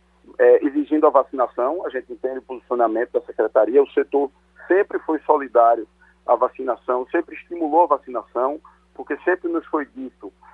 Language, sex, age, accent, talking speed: Portuguese, male, 50-69, Brazilian, 155 wpm